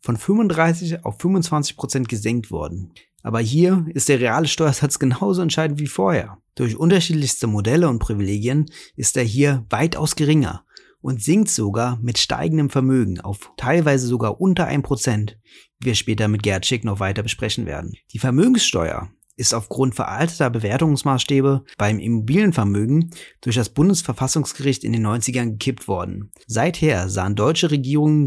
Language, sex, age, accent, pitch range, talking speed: German, male, 30-49, German, 110-150 Hz, 140 wpm